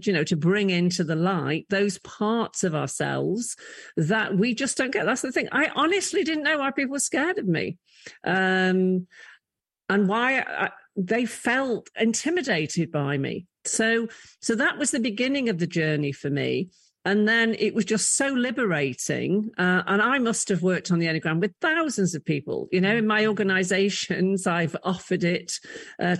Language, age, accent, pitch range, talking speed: English, 50-69, British, 170-240 Hz, 175 wpm